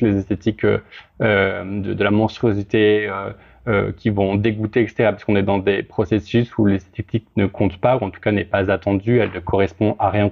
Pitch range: 100-110 Hz